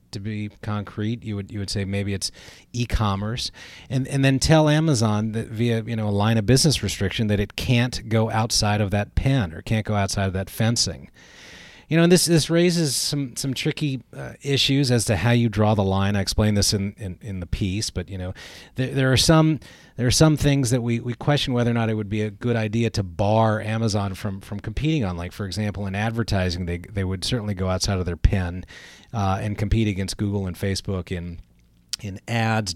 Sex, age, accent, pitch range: male, 30-49, American, 95-115 Hz